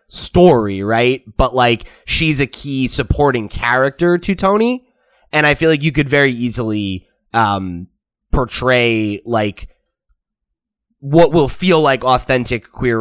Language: English